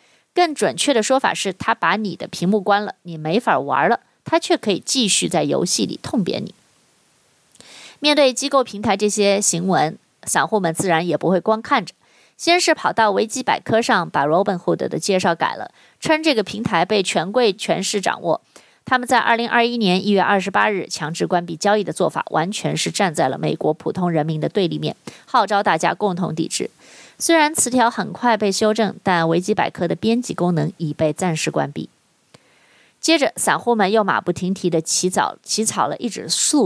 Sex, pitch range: female, 180-235 Hz